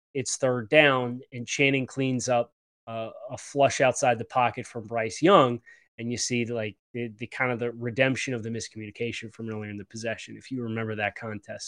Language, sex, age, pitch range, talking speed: English, male, 20-39, 120-150 Hz, 200 wpm